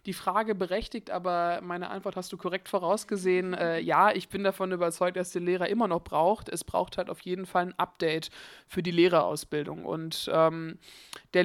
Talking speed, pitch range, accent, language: 190 wpm, 175-200 Hz, German, German